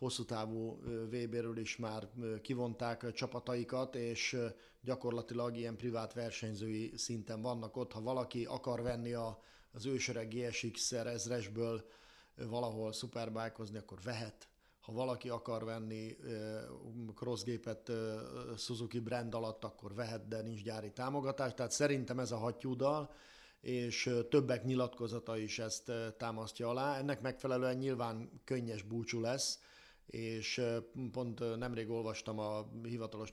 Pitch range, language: 110-125 Hz, Hungarian